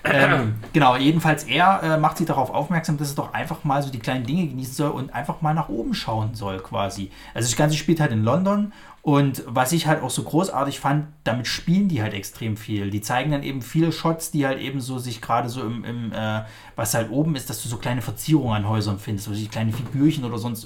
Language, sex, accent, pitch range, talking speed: German, male, German, 110-155 Hz, 240 wpm